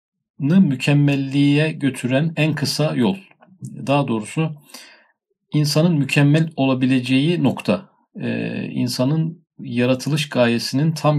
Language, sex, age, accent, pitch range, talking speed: Turkish, male, 50-69, native, 125-165 Hz, 80 wpm